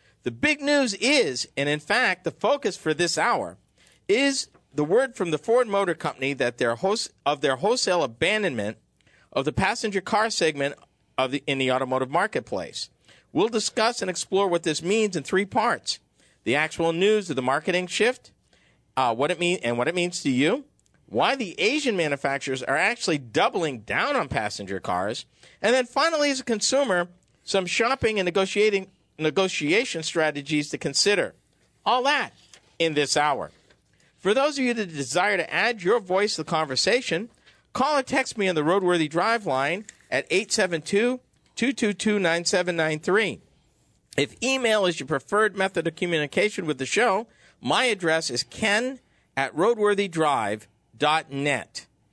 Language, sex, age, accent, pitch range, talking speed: English, male, 50-69, American, 150-220 Hz, 160 wpm